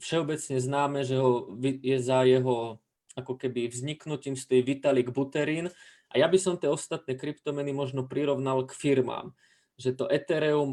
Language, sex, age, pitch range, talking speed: Slovak, male, 20-39, 130-145 Hz, 150 wpm